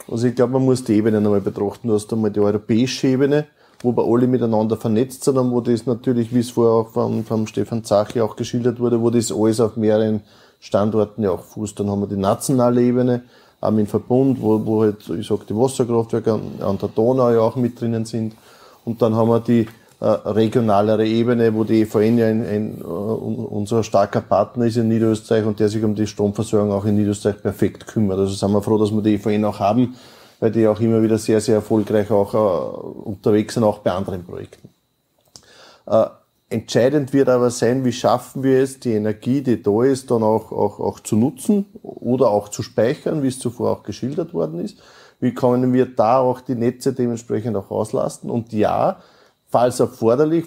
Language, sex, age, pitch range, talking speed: German, male, 20-39, 110-125 Hz, 205 wpm